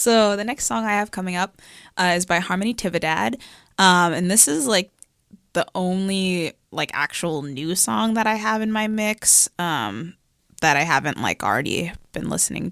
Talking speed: 180 wpm